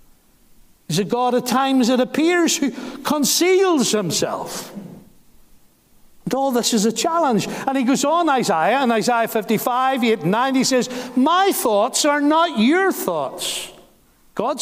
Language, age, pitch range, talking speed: English, 60-79, 225-295 Hz, 150 wpm